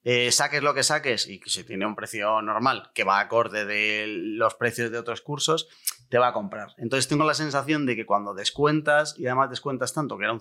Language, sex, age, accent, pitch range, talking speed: Spanish, male, 30-49, Spanish, 115-135 Hz, 230 wpm